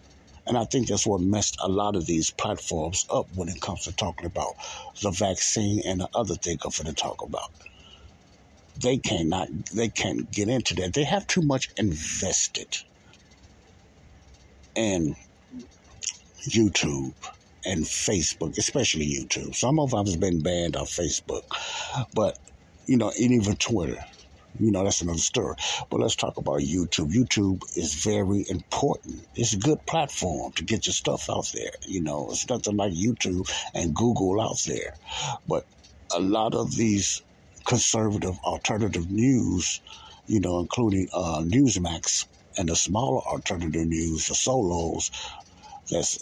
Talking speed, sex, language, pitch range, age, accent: 150 wpm, male, English, 85-110 Hz, 60-79, American